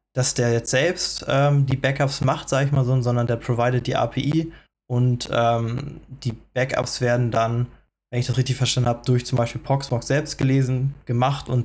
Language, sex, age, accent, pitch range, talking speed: German, male, 20-39, German, 120-140 Hz, 190 wpm